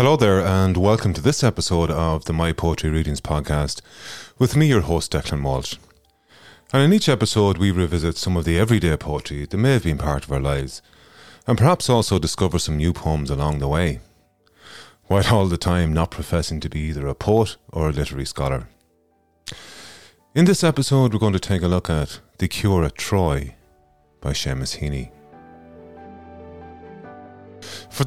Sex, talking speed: male, 175 wpm